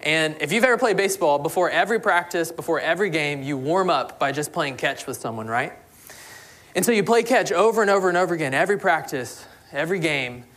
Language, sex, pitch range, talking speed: English, male, 140-185 Hz, 210 wpm